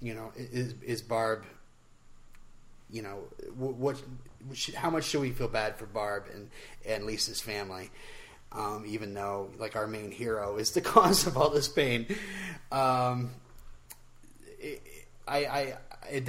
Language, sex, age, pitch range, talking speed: English, male, 30-49, 115-130 Hz, 140 wpm